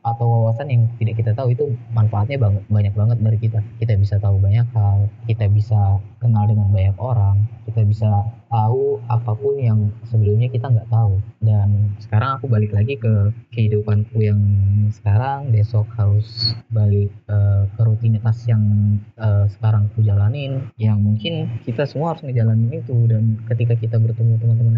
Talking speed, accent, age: 155 wpm, native, 20-39